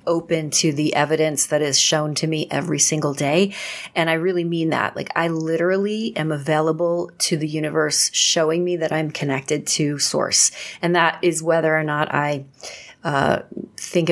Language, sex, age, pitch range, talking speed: English, female, 30-49, 150-165 Hz, 175 wpm